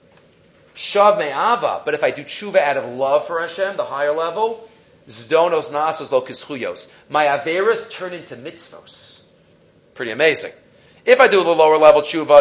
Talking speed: 160 wpm